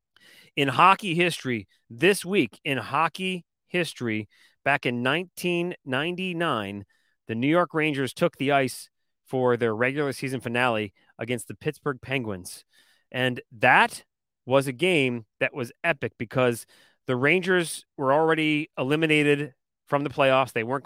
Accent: American